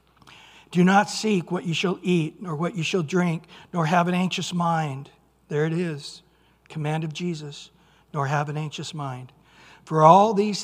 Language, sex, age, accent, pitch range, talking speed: English, male, 60-79, American, 150-190 Hz, 175 wpm